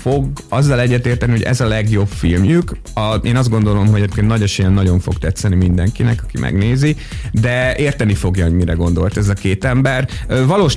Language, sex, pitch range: Hungarian, male, 95-115 Hz